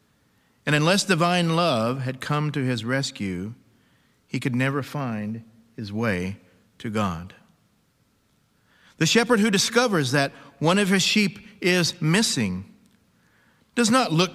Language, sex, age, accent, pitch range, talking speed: English, male, 50-69, American, 110-155 Hz, 130 wpm